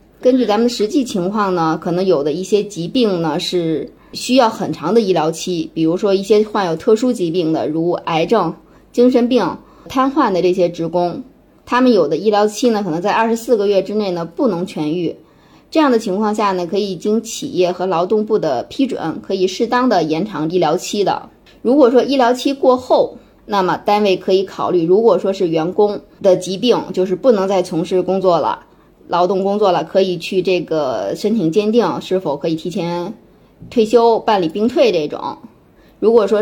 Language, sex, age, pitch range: Chinese, female, 20-39, 180-230 Hz